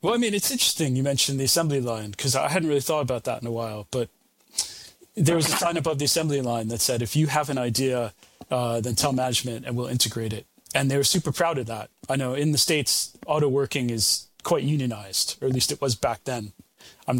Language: English